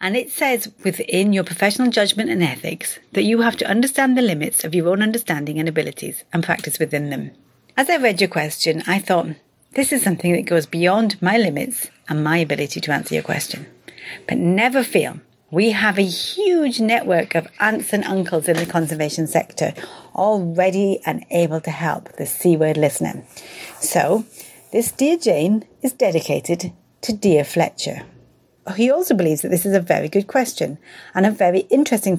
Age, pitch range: 40-59, 165-230 Hz